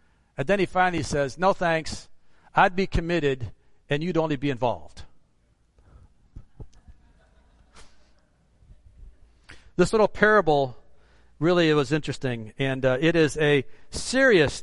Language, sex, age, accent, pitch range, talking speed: English, male, 50-69, American, 130-170 Hz, 110 wpm